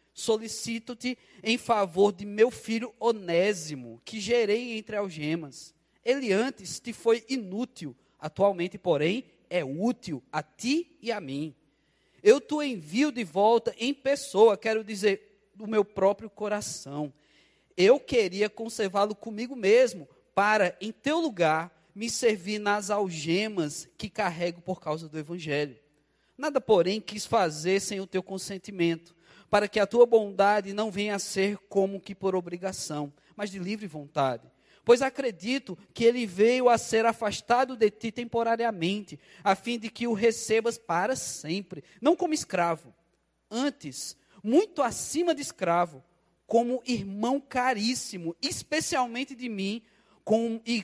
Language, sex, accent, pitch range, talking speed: Portuguese, male, Brazilian, 175-235 Hz, 135 wpm